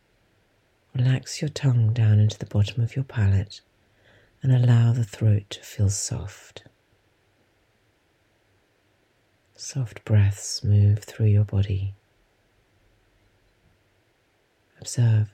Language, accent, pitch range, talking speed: English, British, 100-115 Hz, 95 wpm